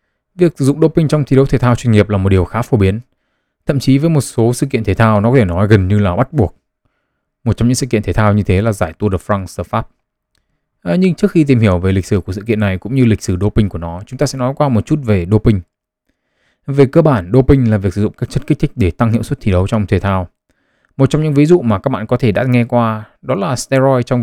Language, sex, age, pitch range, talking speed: Vietnamese, male, 20-39, 100-130 Hz, 290 wpm